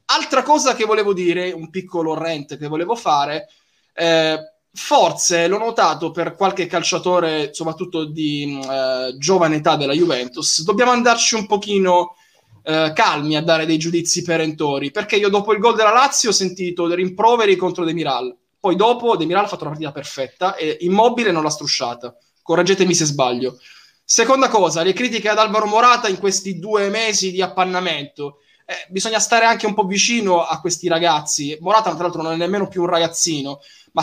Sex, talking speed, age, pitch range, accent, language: male, 175 wpm, 20-39, 160-215 Hz, native, Italian